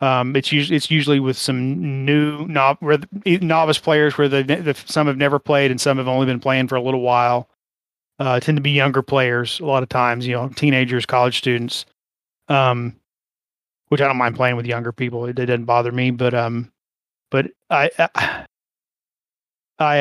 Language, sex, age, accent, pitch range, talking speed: English, male, 30-49, American, 130-145 Hz, 185 wpm